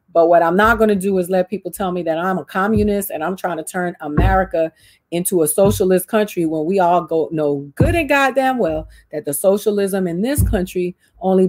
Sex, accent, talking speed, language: female, American, 220 wpm, English